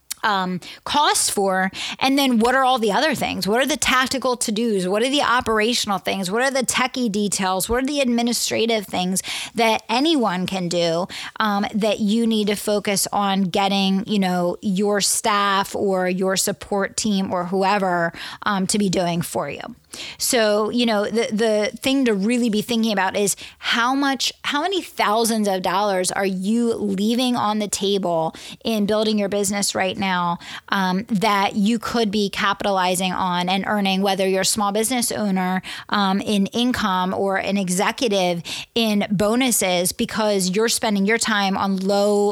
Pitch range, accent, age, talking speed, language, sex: 190-225 Hz, American, 20-39, 170 wpm, English, female